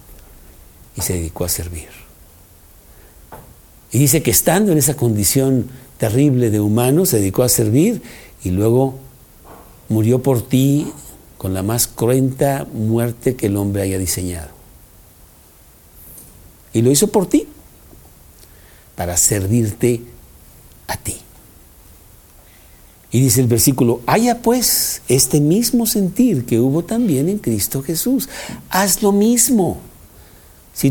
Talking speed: 120 wpm